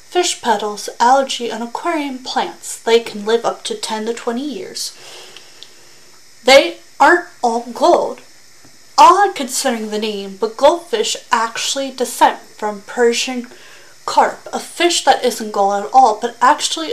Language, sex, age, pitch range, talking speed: English, female, 30-49, 220-330 Hz, 140 wpm